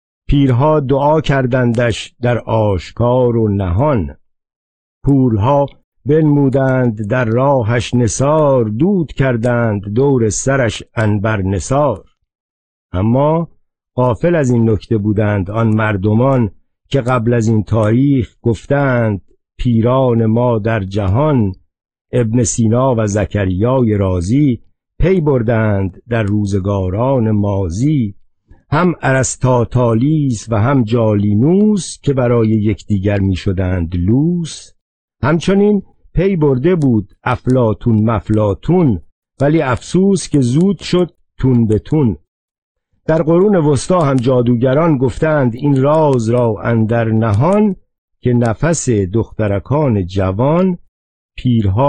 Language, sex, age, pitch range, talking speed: Persian, male, 50-69, 105-140 Hz, 100 wpm